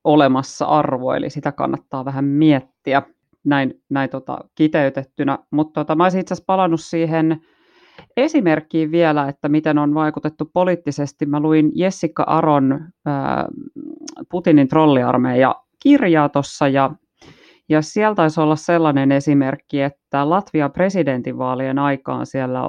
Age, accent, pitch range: 30-49, native, 135-160 Hz